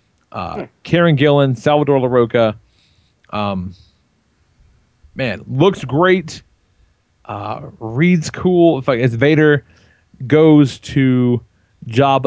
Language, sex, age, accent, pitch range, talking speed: English, male, 40-59, American, 105-140 Hz, 95 wpm